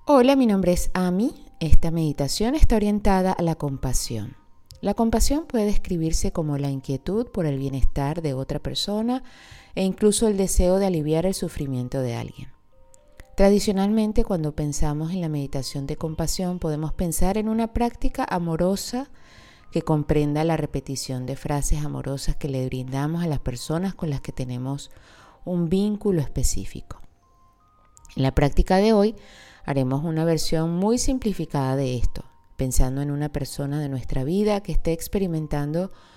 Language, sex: Spanish, female